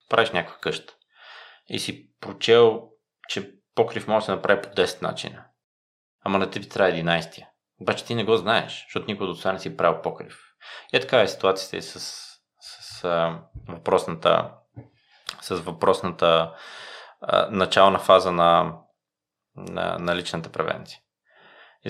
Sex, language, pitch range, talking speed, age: male, Bulgarian, 85-115 Hz, 150 wpm, 20-39